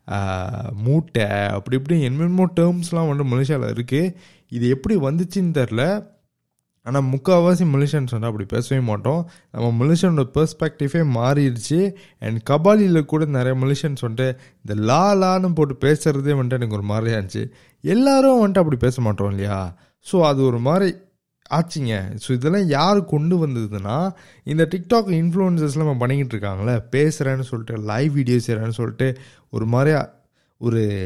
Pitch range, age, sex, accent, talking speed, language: 120-170 Hz, 20-39, male, native, 135 wpm, Tamil